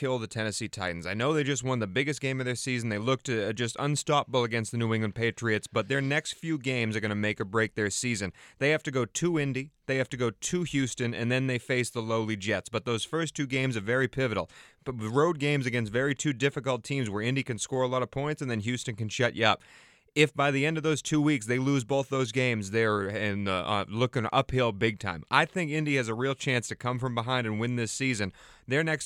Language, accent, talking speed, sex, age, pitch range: English, American, 255 wpm, male, 30-49, 110-135 Hz